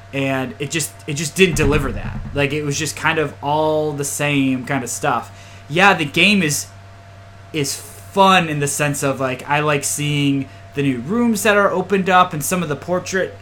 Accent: American